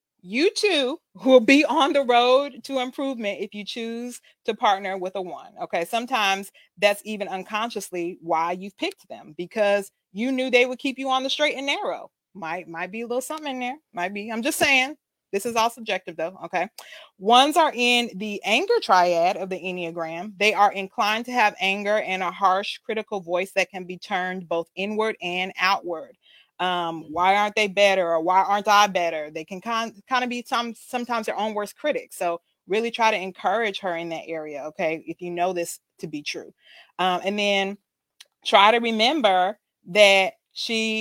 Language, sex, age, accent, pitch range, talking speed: English, female, 30-49, American, 180-235 Hz, 190 wpm